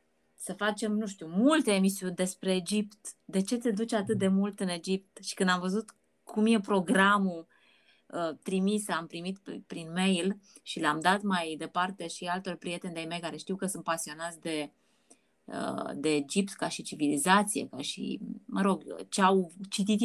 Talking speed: 170 wpm